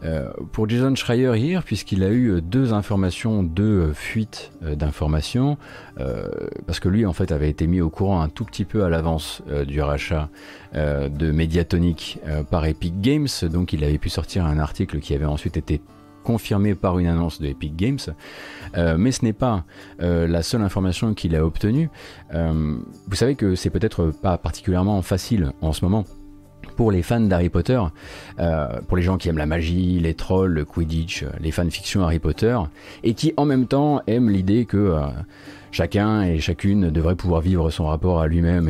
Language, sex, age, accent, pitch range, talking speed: French, male, 30-49, French, 80-100 Hz, 195 wpm